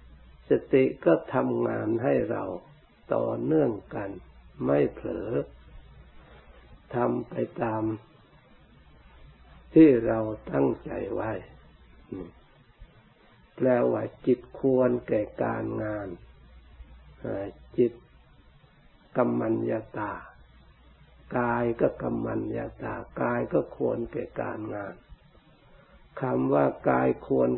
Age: 60-79